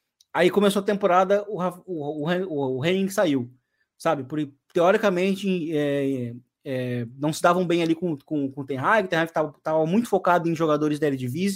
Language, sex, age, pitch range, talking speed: Portuguese, male, 20-39, 155-205 Hz, 190 wpm